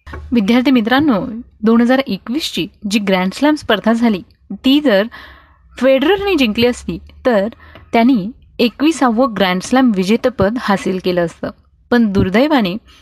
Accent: native